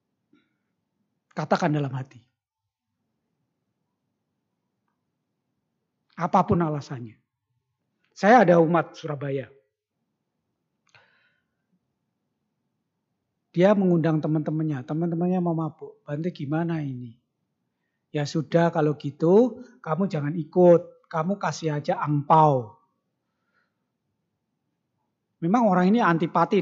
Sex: male